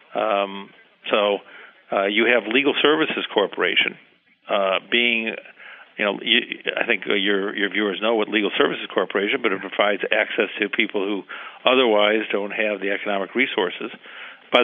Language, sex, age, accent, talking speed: English, male, 50-69, American, 150 wpm